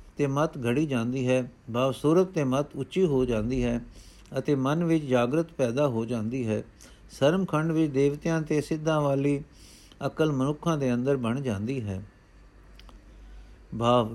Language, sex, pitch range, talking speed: Punjabi, male, 125-165 Hz, 150 wpm